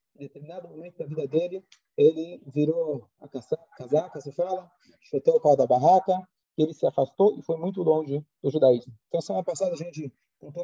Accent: Brazilian